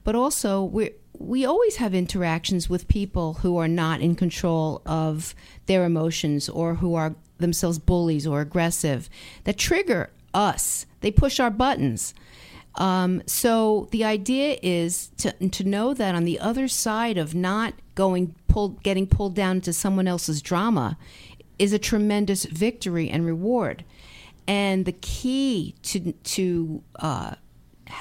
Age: 50-69